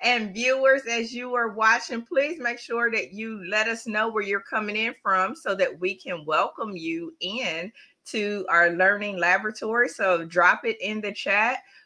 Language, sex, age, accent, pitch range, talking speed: English, female, 30-49, American, 195-255 Hz, 180 wpm